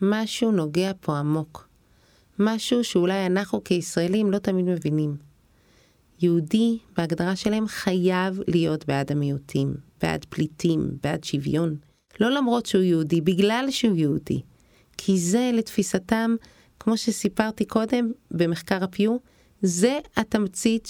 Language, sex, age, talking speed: Hebrew, female, 30-49, 110 wpm